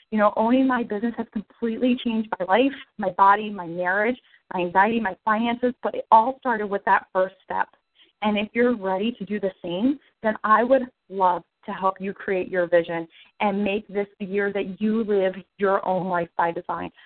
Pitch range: 190-225 Hz